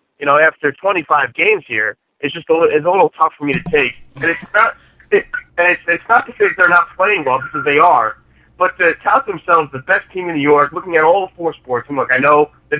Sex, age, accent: male, 30-49, American